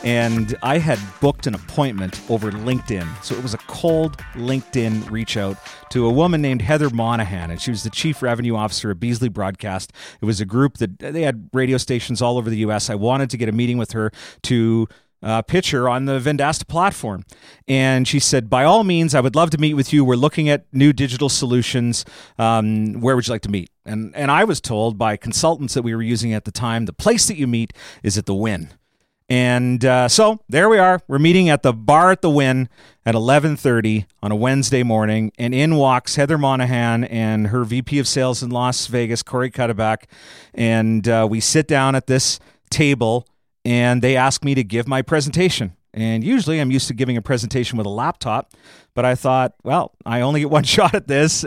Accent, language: American, English